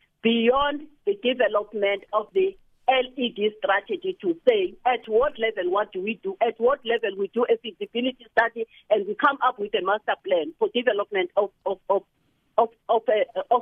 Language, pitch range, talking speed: English, 215-325 Hz, 165 wpm